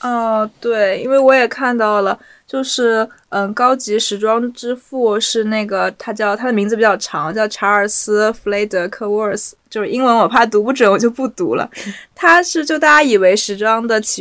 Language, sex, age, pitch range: Chinese, female, 20-39, 200-240 Hz